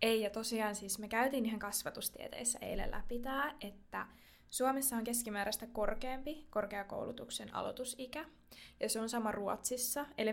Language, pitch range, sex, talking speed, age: Finnish, 215-265 Hz, female, 140 wpm, 20-39